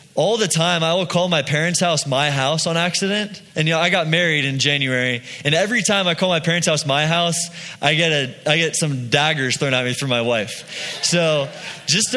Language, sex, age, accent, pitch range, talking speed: English, male, 20-39, American, 150-185 Hz, 225 wpm